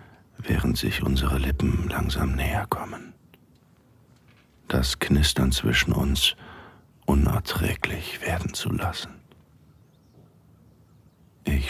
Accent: German